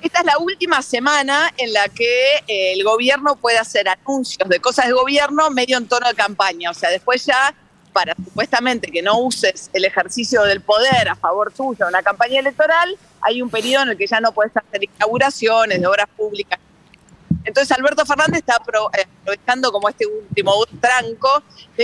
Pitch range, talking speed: 200-270 Hz, 180 wpm